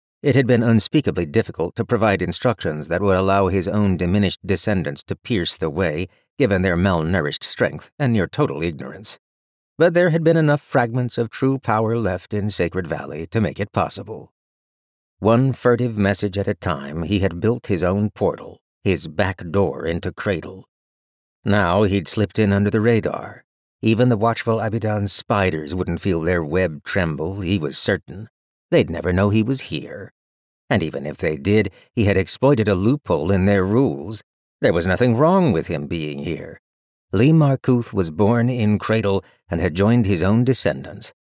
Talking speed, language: 175 wpm, English